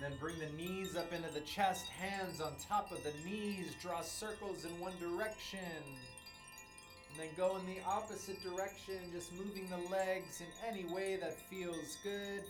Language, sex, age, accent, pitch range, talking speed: English, male, 30-49, American, 145-195 Hz, 180 wpm